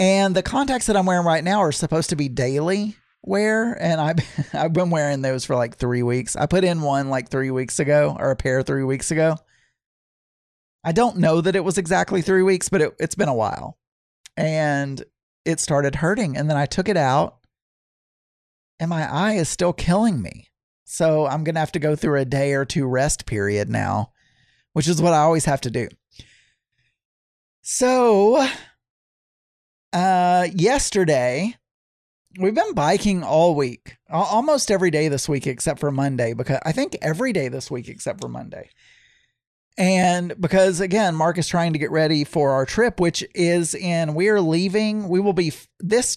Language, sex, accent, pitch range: English, male, American, 140-190 Hz